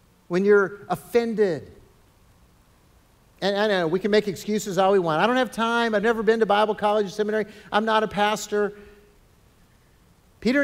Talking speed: 170 wpm